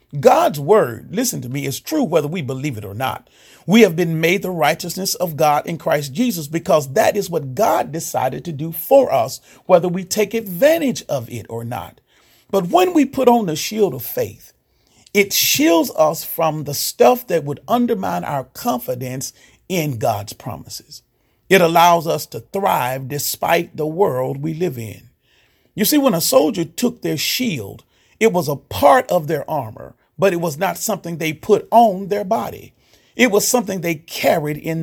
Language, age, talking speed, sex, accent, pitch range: English, 40-59, 185 wpm, male, American, 150-225 Hz